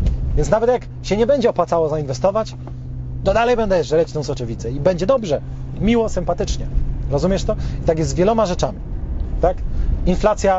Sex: male